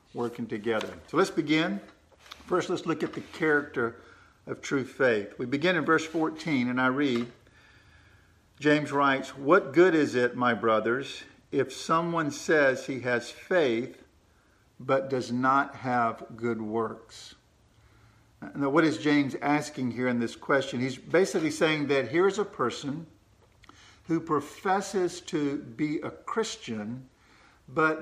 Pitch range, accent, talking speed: 120-160 Hz, American, 140 wpm